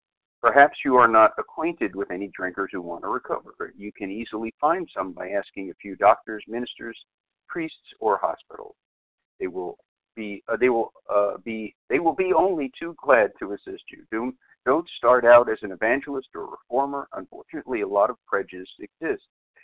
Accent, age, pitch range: American, 50-69, 100-140 Hz